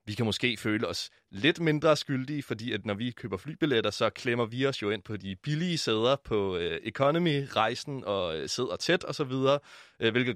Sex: male